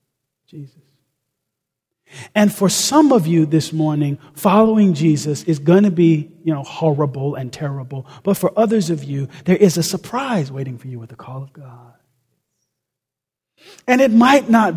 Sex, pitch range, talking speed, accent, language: male, 140-175 Hz, 165 wpm, American, English